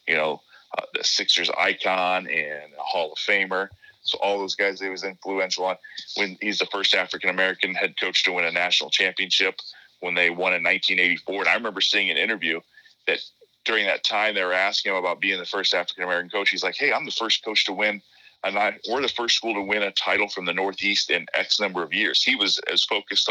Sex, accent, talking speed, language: male, American, 220 wpm, English